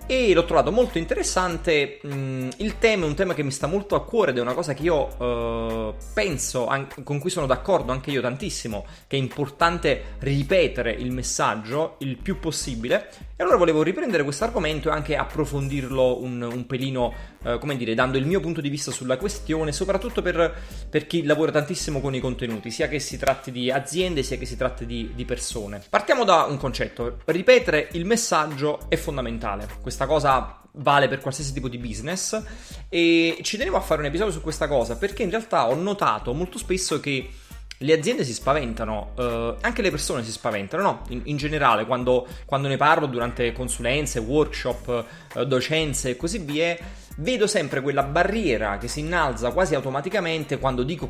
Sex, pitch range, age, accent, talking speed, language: male, 125-170 Hz, 30-49, native, 185 wpm, Italian